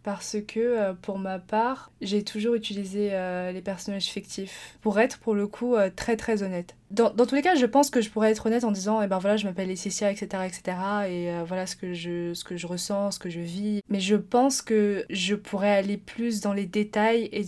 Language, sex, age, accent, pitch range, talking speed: French, female, 20-39, French, 195-220 Hz, 245 wpm